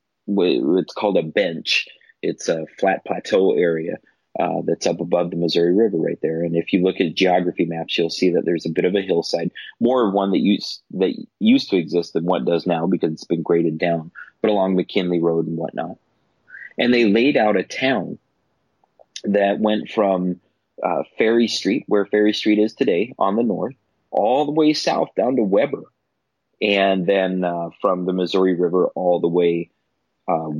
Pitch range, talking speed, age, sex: 90-115 Hz, 190 wpm, 30-49, male